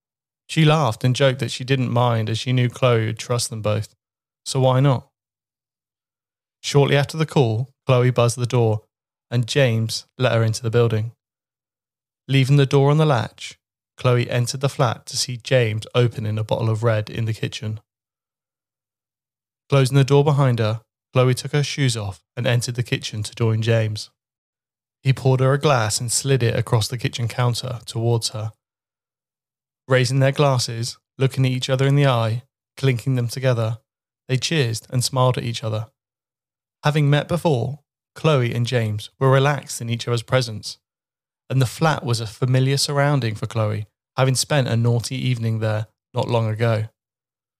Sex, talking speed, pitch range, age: male, 170 wpm, 115-135 Hz, 20-39